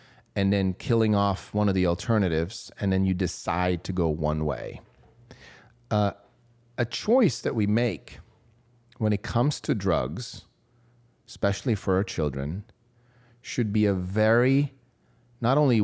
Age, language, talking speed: 30-49, English, 140 wpm